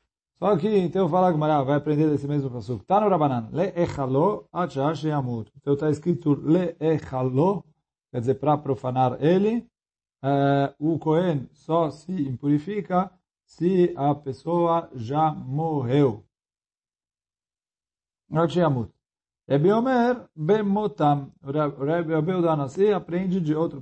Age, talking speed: 40-59, 90 wpm